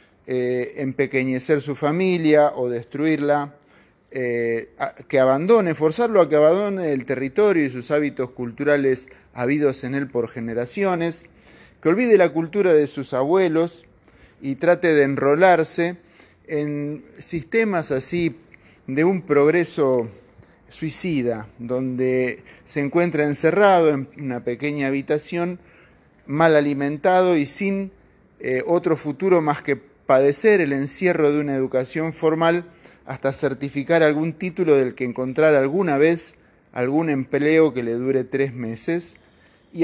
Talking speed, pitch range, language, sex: 125 wpm, 130-165 Hz, Spanish, male